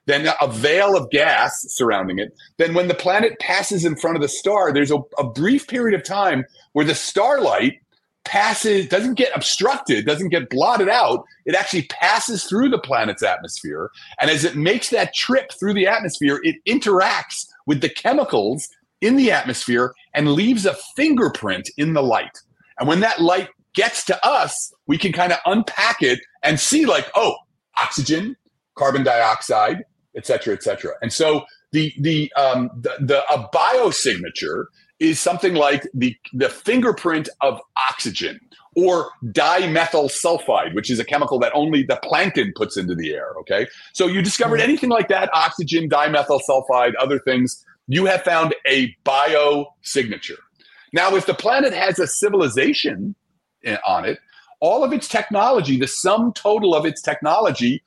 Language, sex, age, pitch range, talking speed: English, male, 40-59, 145-220 Hz, 165 wpm